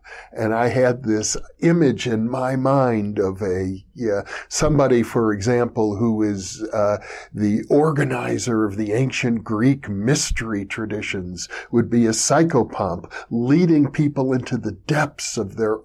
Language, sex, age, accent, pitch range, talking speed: English, male, 50-69, American, 115-160 Hz, 135 wpm